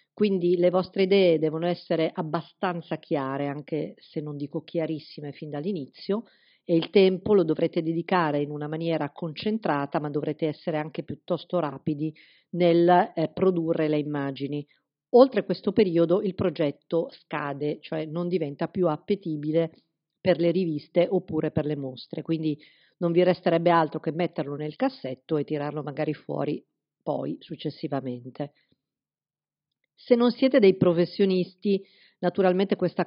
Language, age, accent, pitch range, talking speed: Italian, 50-69, native, 155-185 Hz, 140 wpm